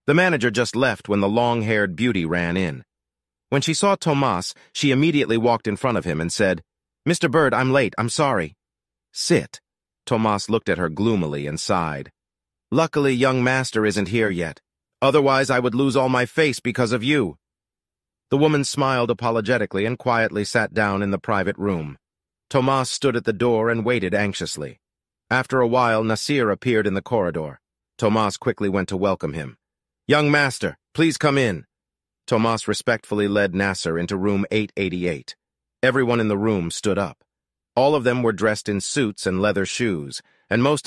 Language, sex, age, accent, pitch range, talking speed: English, male, 40-59, American, 100-130 Hz, 175 wpm